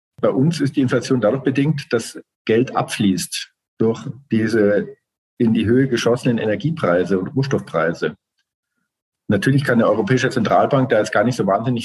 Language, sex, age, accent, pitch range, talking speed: German, male, 50-69, German, 110-135 Hz, 150 wpm